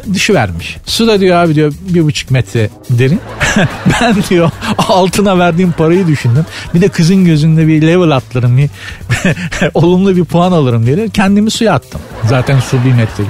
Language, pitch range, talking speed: Turkish, 125-180 Hz, 165 wpm